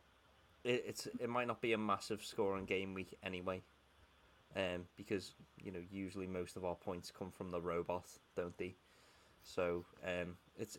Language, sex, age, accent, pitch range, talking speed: English, male, 20-39, British, 95-115 Hz, 160 wpm